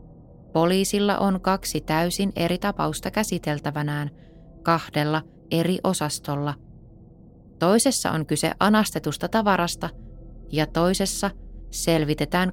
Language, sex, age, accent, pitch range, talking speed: Finnish, female, 20-39, native, 150-180 Hz, 85 wpm